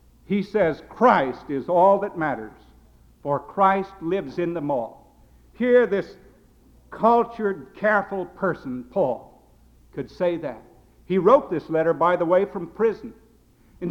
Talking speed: 140 wpm